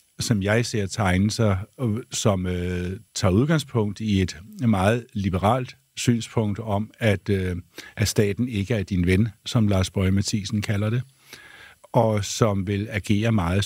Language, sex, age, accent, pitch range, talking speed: Danish, male, 60-79, native, 100-120 Hz, 140 wpm